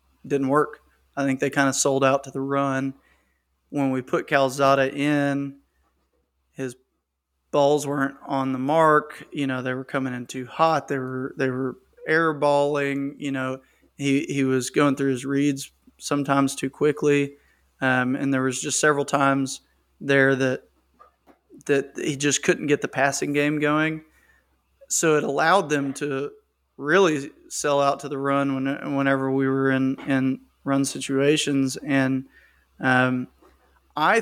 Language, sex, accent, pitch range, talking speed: English, male, American, 135-145 Hz, 155 wpm